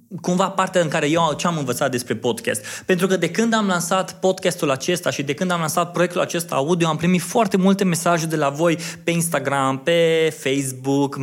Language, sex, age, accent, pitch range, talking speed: Romanian, male, 20-39, native, 130-180 Hz, 200 wpm